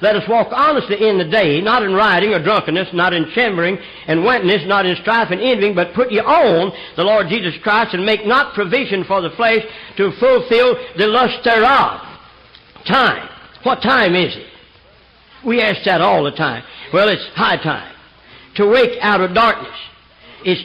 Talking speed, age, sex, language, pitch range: 185 wpm, 60-79, male, English, 170-230 Hz